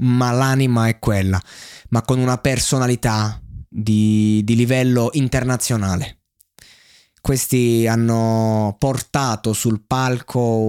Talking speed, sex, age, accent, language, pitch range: 95 wpm, male, 20-39, native, Italian, 115-135 Hz